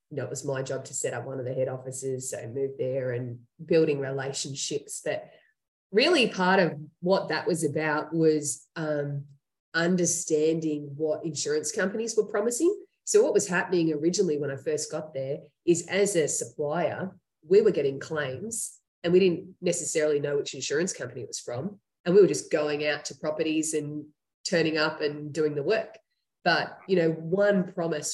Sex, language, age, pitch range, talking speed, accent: female, English, 20-39, 150-190 Hz, 185 wpm, Australian